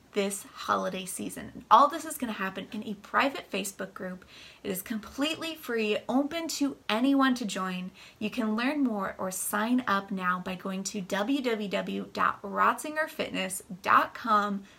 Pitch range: 195-250 Hz